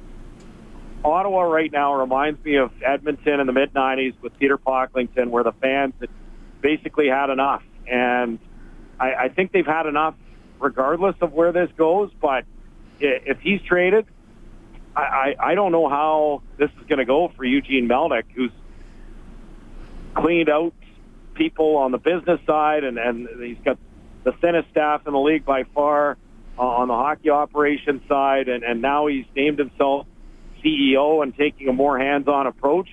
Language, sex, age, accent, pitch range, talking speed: English, male, 50-69, American, 135-160 Hz, 160 wpm